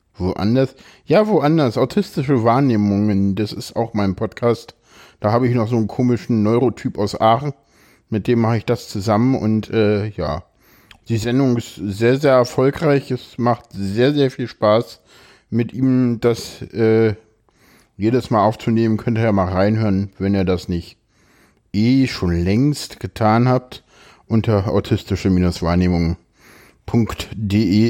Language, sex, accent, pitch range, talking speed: German, male, German, 105-130 Hz, 140 wpm